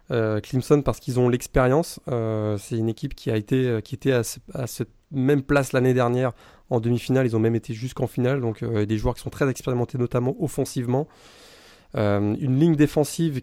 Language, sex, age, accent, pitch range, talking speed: French, male, 20-39, French, 115-140 Hz, 210 wpm